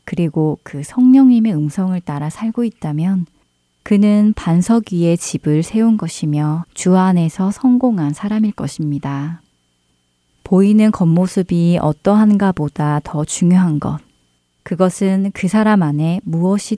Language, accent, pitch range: Korean, native, 150-200 Hz